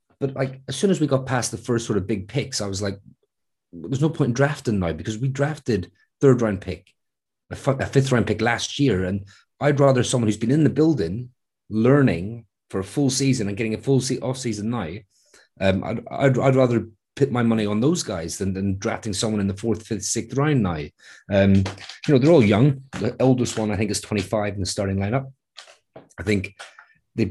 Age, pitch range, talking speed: 30-49, 100-125 Hz, 215 wpm